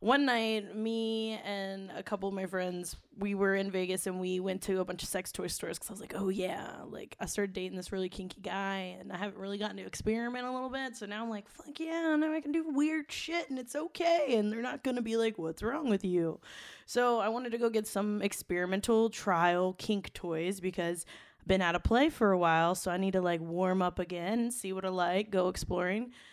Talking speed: 240 wpm